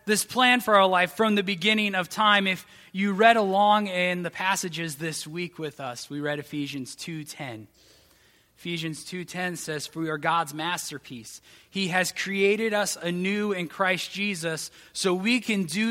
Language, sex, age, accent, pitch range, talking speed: English, male, 20-39, American, 150-200 Hz, 170 wpm